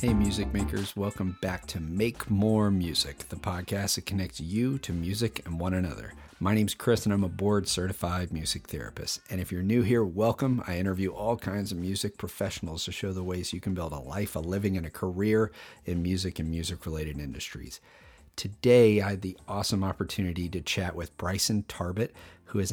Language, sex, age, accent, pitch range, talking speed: English, male, 40-59, American, 90-100 Hz, 195 wpm